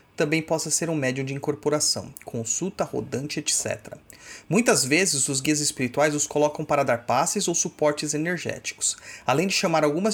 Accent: Brazilian